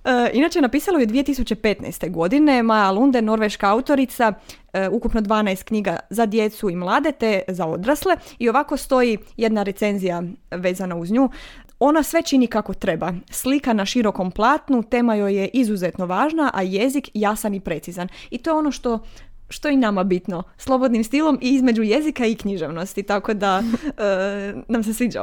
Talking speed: 165 wpm